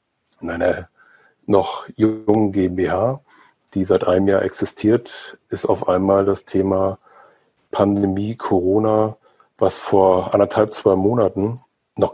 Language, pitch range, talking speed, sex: German, 95-105 Hz, 115 wpm, male